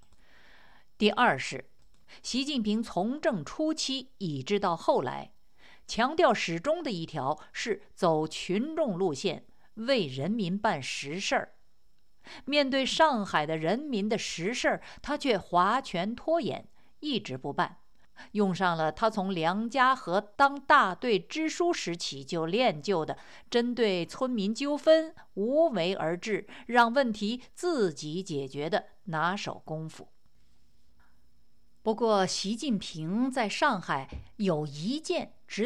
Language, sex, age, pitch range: Chinese, female, 50-69, 175-270 Hz